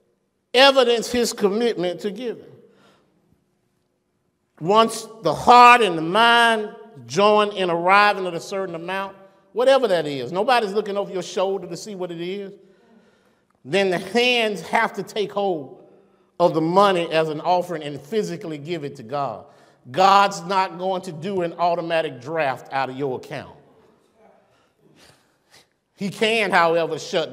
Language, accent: English, American